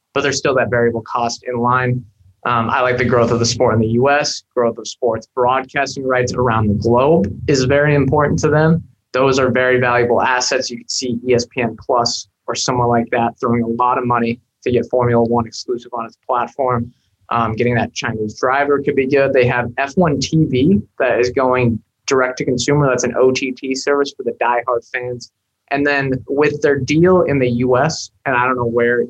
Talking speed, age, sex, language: 200 wpm, 20-39, male, English